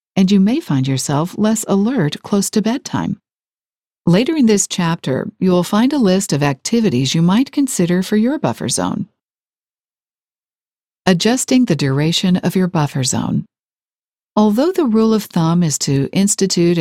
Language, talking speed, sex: English, 155 wpm, female